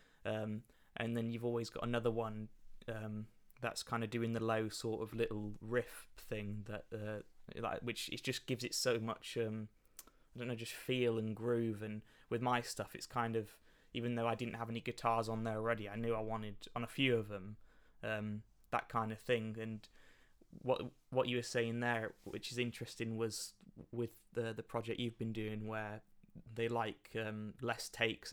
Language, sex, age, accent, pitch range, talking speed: English, male, 20-39, British, 110-120 Hz, 195 wpm